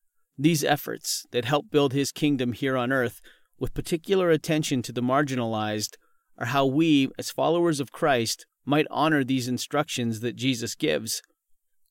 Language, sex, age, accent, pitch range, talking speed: English, male, 40-59, American, 120-145 Hz, 150 wpm